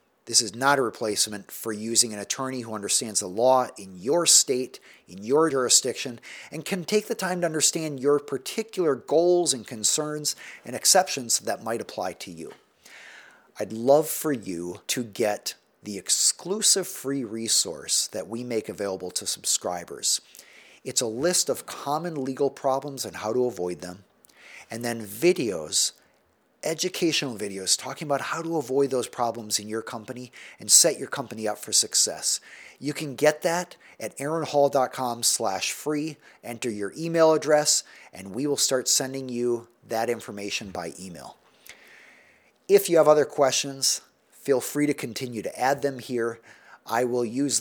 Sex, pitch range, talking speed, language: male, 115-150 Hz, 160 wpm, English